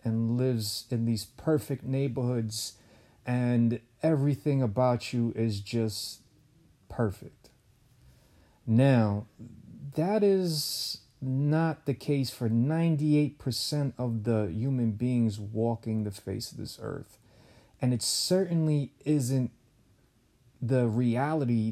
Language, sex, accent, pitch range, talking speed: English, male, American, 110-130 Hz, 100 wpm